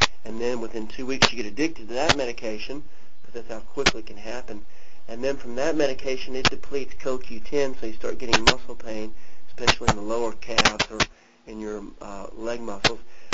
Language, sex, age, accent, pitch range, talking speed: English, male, 40-59, American, 110-130 Hz, 195 wpm